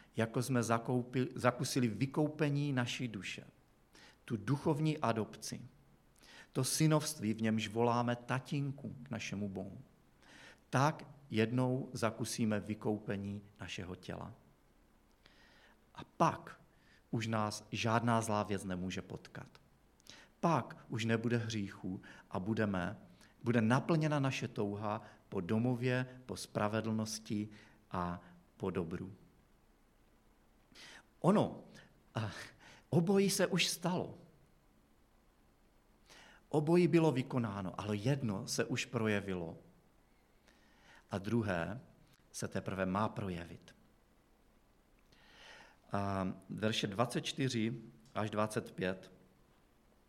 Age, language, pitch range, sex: 40-59, Czech, 100-130 Hz, male